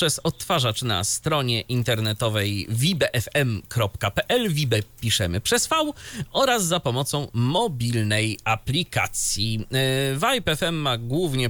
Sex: male